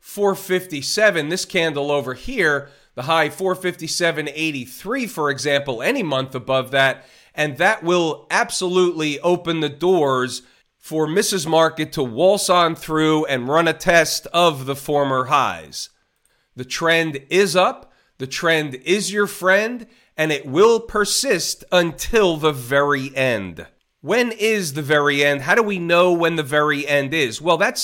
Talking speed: 150 wpm